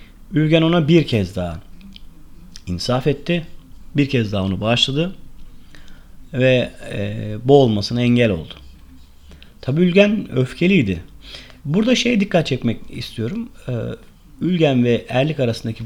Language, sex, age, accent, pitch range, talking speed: Turkish, male, 40-59, native, 105-140 Hz, 105 wpm